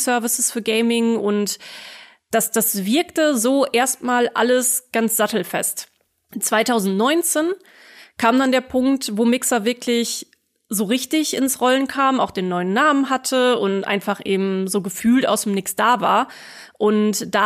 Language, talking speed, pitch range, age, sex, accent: German, 145 wpm, 215-255 Hz, 20-39, female, German